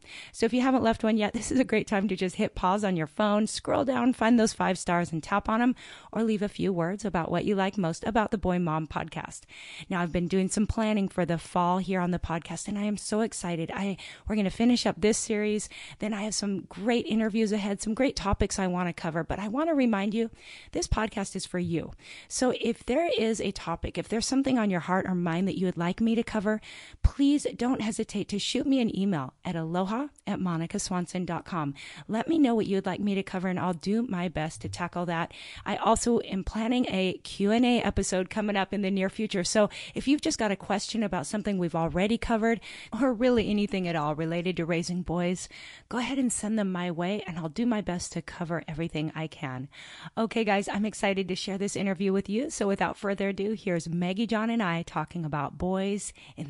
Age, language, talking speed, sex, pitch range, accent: 30-49, English, 235 wpm, female, 175-220 Hz, American